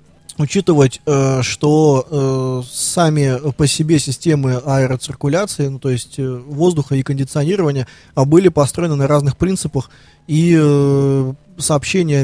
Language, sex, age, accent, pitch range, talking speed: Russian, male, 20-39, native, 135-160 Hz, 100 wpm